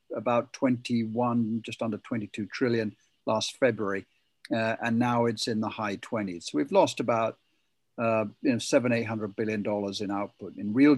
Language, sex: English, male